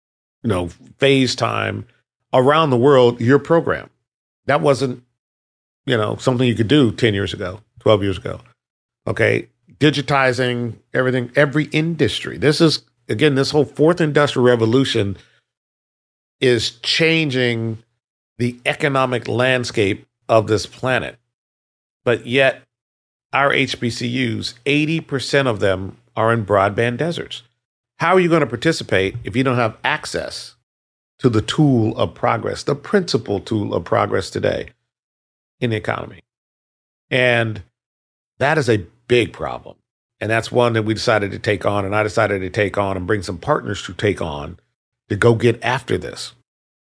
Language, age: English, 40-59